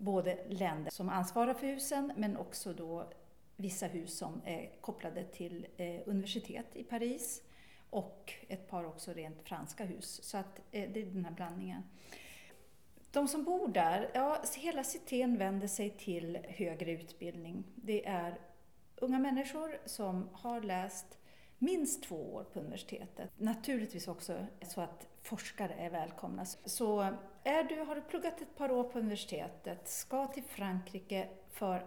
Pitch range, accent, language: 180-245 Hz, native, Swedish